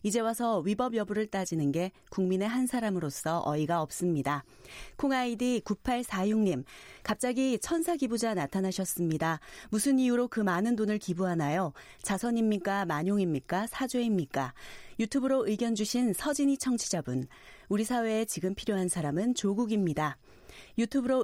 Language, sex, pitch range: Korean, female, 180-235 Hz